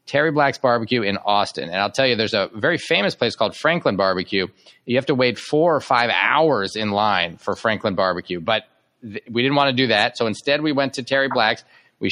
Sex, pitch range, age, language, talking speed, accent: male, 90-125 Hz, 40-59, English, 225 wpm, American